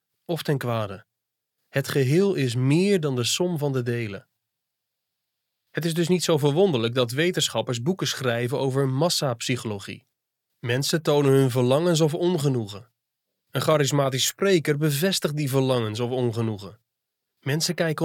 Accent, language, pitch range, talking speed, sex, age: Dutch, Dutch, 130-170 Hz, 135 wpm, male, 30-49